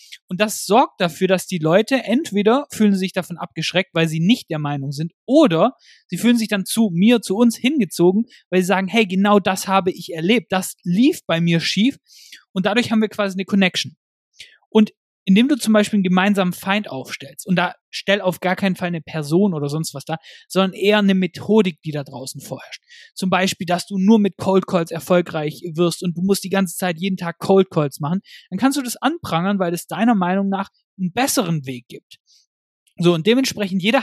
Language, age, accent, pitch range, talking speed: German, 30-49, German, 170-215 Hz, 205 wpm